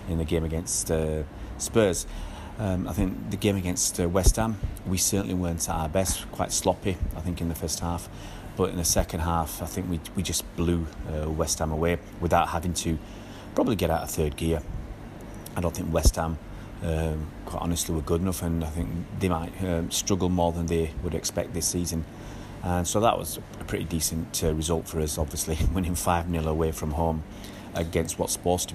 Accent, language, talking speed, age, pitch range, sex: British, English, 205 wpm, 30-49, 85-100 Hz, male